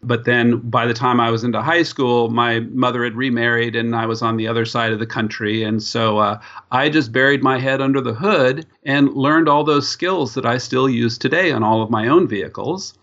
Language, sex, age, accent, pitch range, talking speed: English, male, 50-69, American, 115-145 Hz, 235 wpm